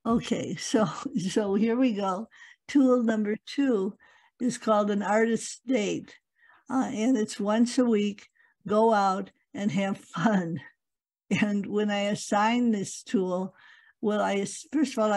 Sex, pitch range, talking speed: female, 205-260 Hz, 140 wpm